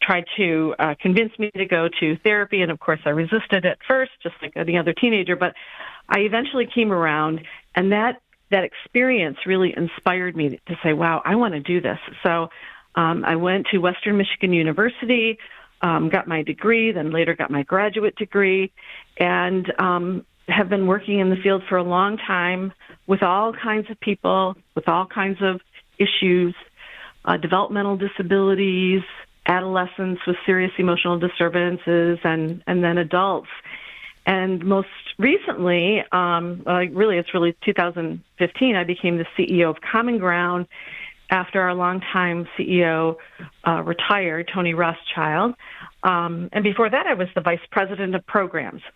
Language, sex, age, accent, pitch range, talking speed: English, female, 50-69, American, 170-200 Hz, 155 wpm